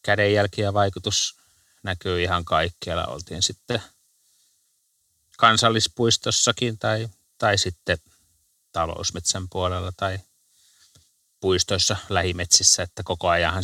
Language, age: Finnish, 30-49